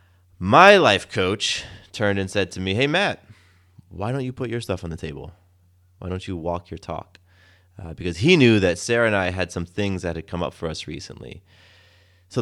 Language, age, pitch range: English, 30-49, 85-100 Hz